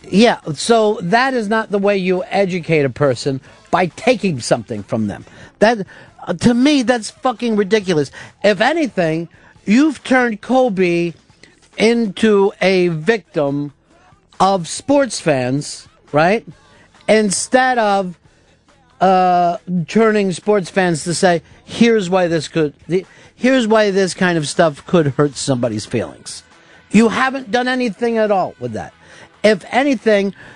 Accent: American